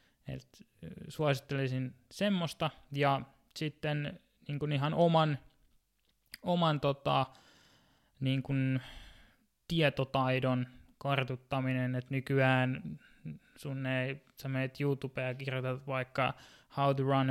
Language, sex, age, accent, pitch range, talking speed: Finnish, male, 20-39, native, 125-140 Hz, 85 wpm